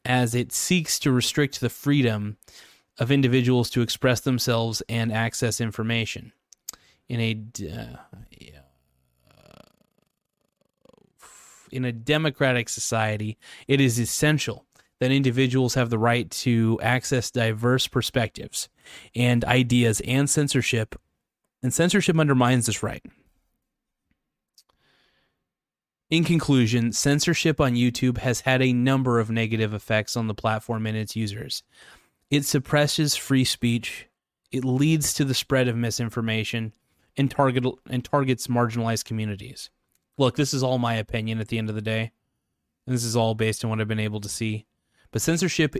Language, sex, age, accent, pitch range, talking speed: English, male, 20-39, American, 115-130 Hz, 135 wpm